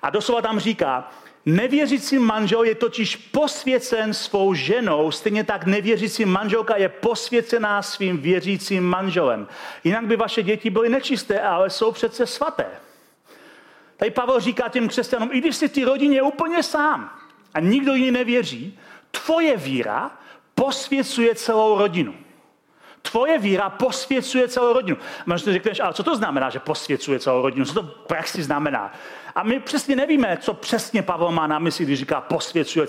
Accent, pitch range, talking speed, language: native, 195-255 Hz, 155 wpm, Czech